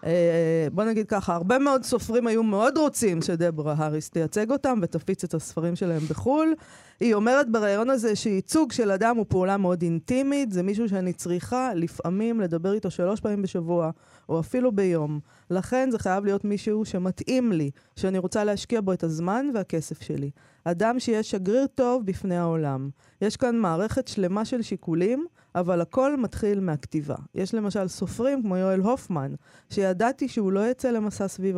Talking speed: 165 wpm